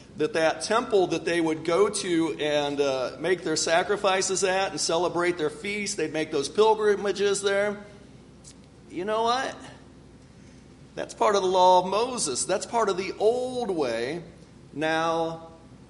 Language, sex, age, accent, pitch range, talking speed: English, male, 40-59, American, 155-205 Hz, 150 wpm